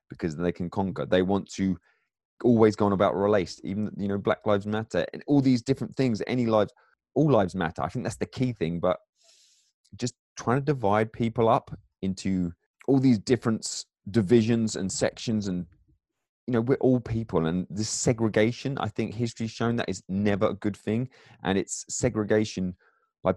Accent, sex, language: British, male, English